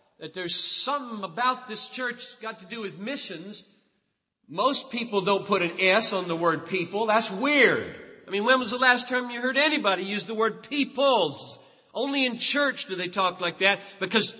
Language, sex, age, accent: English, male, 40-59, American